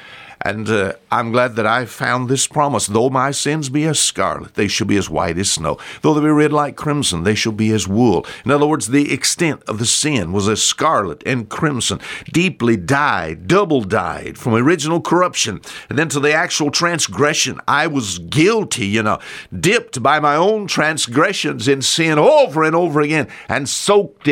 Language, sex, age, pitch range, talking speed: English, male, 50-69, 105-150 Hz, 190 wpm